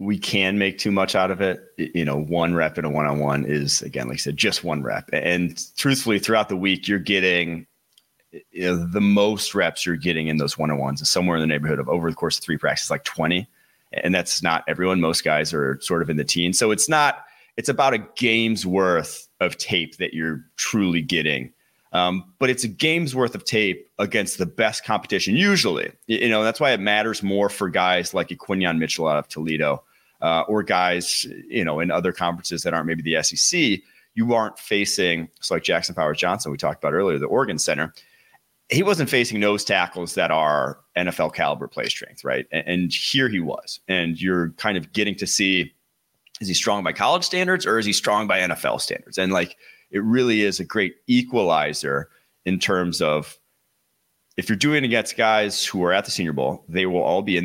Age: 30-49